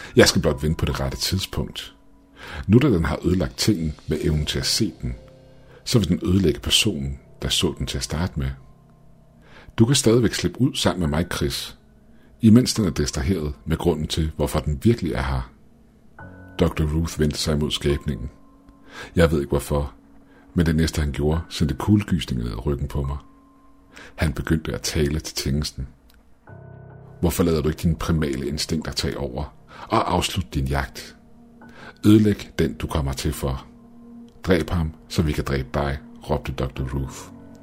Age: 60-79